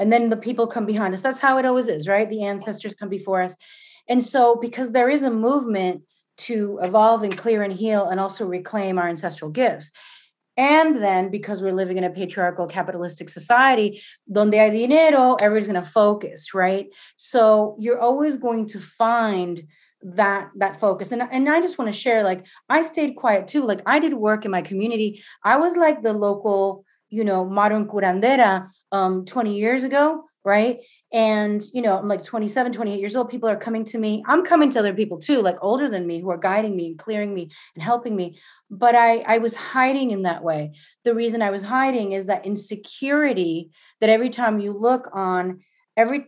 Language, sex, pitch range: English, female, 195-240 Hz